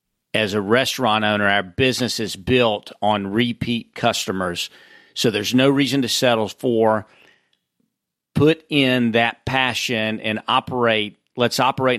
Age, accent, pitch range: 40-59, American, 105-125 Hz